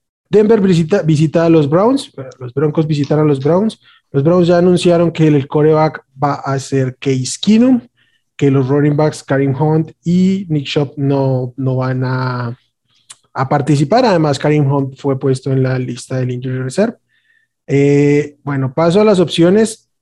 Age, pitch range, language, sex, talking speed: 20-39, 135-175 Hz, Spanish, male, 170 wpm